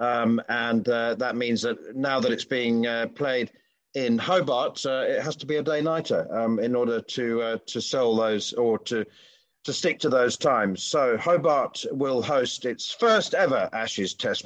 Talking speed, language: 185 wpm, English